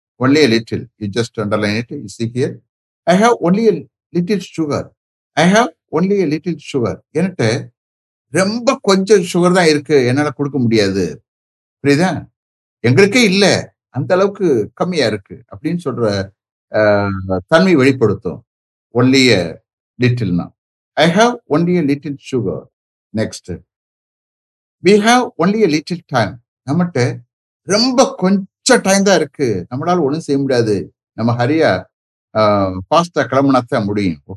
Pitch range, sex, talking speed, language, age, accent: 110-175 Hz, male, 115 wpm, English, 60-79, Indian